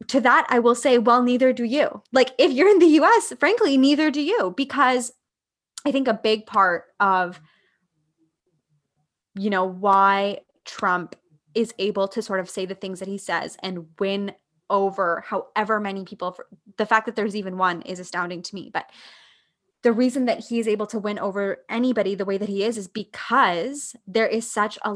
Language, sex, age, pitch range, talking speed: English, female, 20-39, 195-225 Hz, 190 wpm